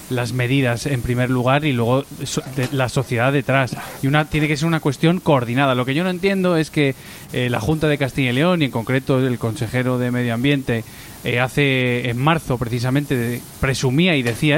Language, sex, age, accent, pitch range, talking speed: Spanish, male, 20-39, Spanish, 125-160 Hz, 210 wpm